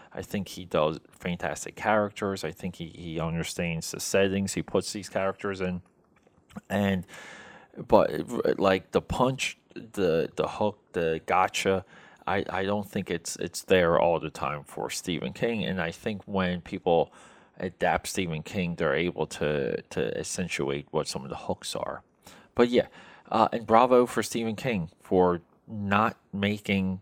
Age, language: 30-49, English